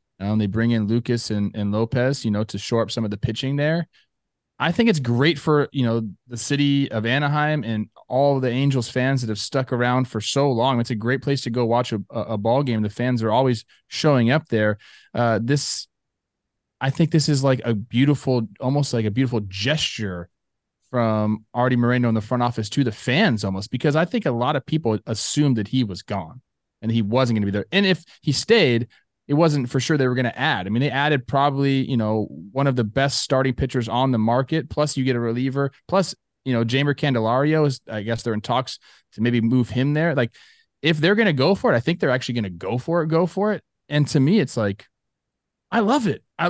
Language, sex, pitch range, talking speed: English, male, 115-145 Hz, 235 wpm